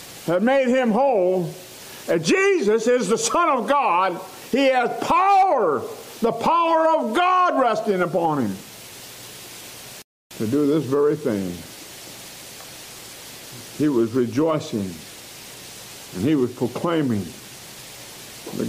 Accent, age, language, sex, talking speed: American, 60-79, English, male, 110 wpm